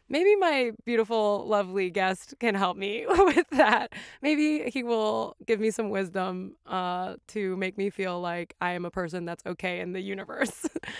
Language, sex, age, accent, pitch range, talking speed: English, female, 20-39, American, 185-230 Hz, 175 wpm